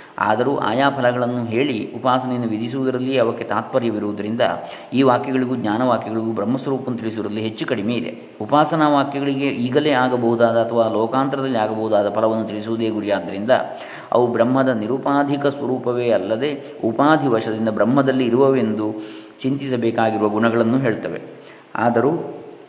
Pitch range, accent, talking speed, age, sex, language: 115-135 Hz, native, 100 wpm, 20-39, male, Kannada